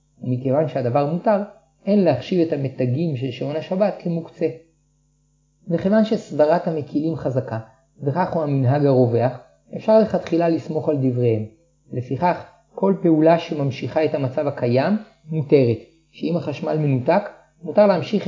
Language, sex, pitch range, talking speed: Hebrew, male, 140-170 Hz, 120 wpm